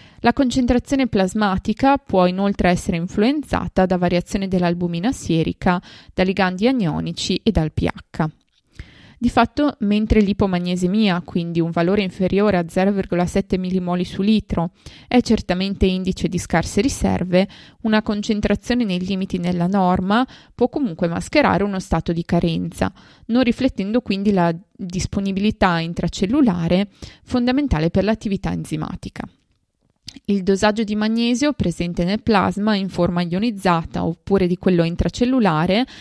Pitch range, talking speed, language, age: 175-215 Hz, 120 wpm, Italian, 20-39